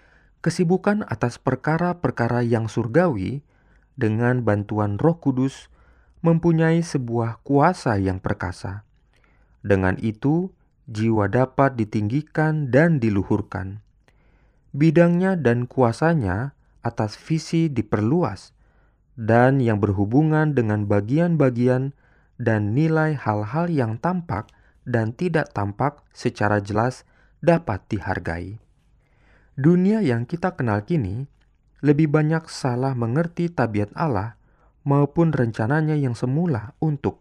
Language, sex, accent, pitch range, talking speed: Indonesian, male, native, 110-155 Hz, 95 wpm